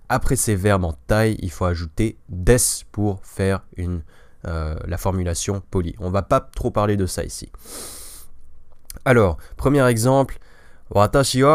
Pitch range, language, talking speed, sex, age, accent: 90-110 Hz, French, 150 wpm, male, 20-39, French